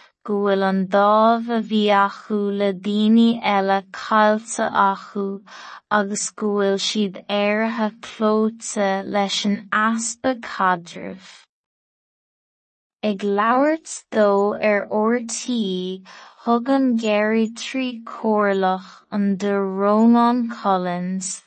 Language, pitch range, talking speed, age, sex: English, 195-225 Hz, 80 wpm, 20-39, female